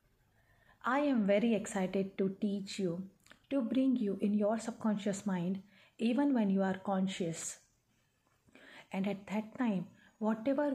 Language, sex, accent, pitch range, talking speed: English, female, Indian, 175-230 Hz, 135 wpm